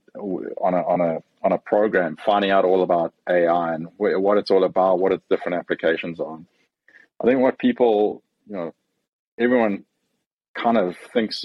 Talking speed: 170 wpm